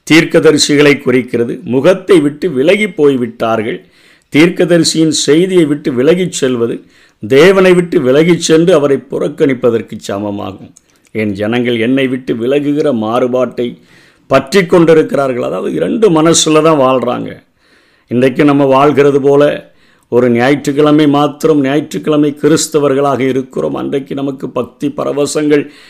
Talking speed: 100 wpm